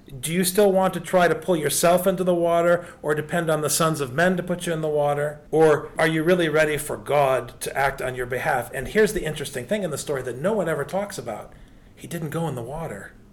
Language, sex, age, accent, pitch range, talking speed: English, male, 40-59, American, 135-185 Hz, 255 wpm